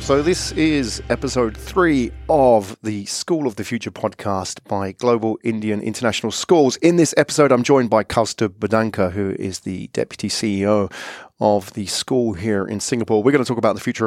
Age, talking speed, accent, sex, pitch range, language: 40-59, 185 wpm, British, male, 110-140 Hz, English